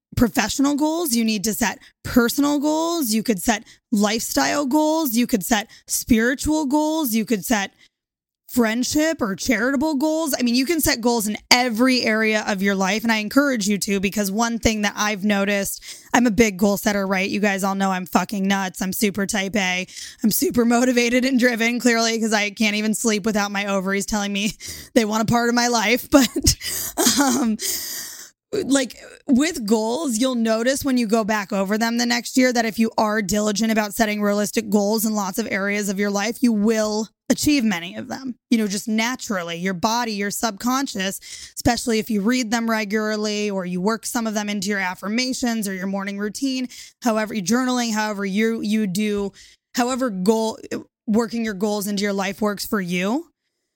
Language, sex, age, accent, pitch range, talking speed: English, female, 20-39, American, 210-250 Hz, 190 wpm